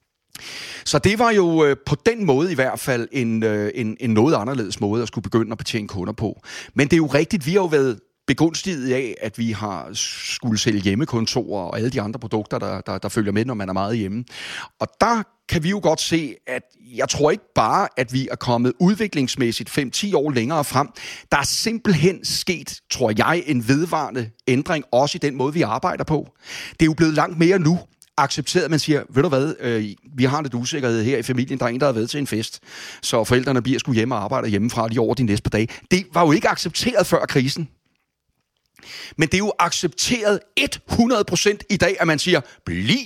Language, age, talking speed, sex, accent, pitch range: Danish, 30-49, 215 wpm, male, native, 115-165 Hz